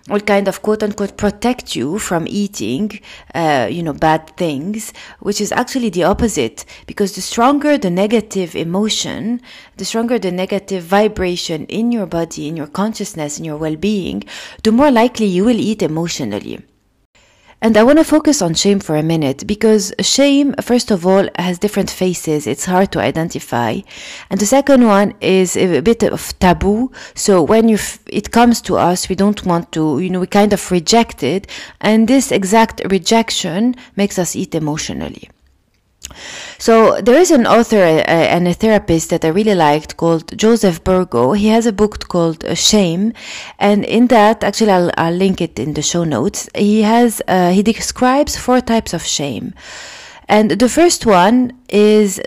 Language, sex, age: English, female, 30-49